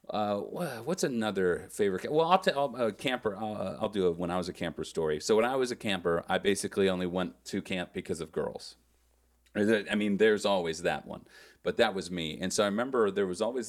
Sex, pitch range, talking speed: male, 80-105 Hz, 230 wpm